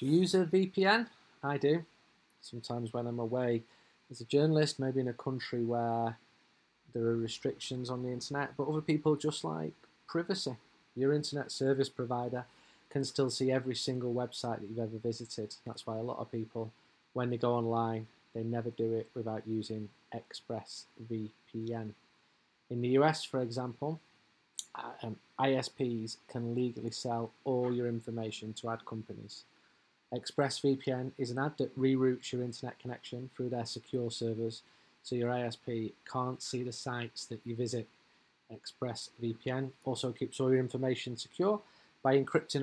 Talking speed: 155 wpm